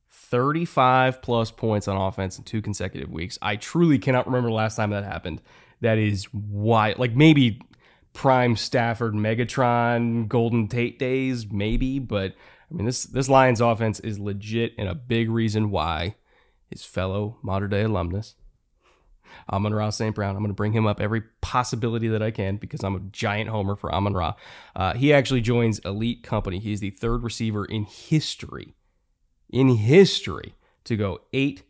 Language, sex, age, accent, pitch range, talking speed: English, male, 20-39, American, 105-125 Hz, 165 wpm